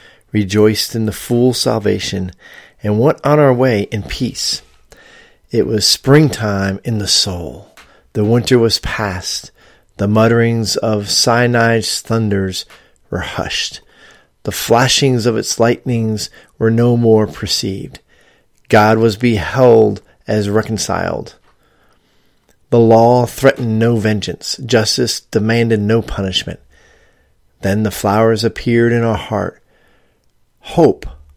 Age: 40-59